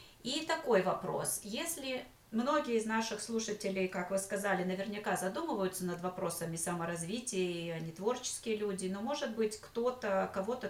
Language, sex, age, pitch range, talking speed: Russian, female, 30-49, 185-225 Hz, 135 wpm